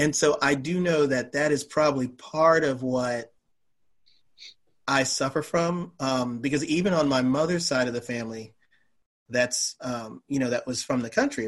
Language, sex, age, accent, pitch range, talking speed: English, male, 30-49, American, 125-165 Hz, 180 wpm